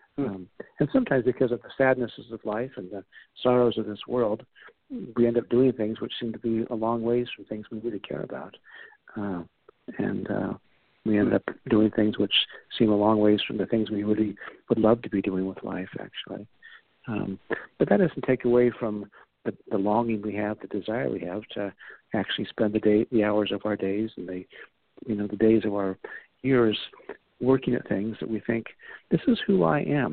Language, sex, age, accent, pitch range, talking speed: English, male, 50-69, American, 105-115 Hz, 210 wpm